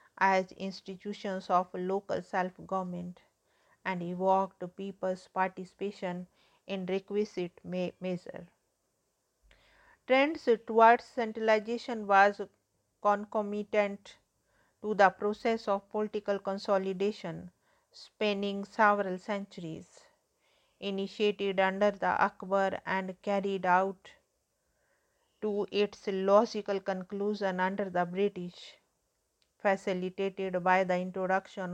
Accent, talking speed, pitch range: Indian, 85 wpm, 185-210 Hz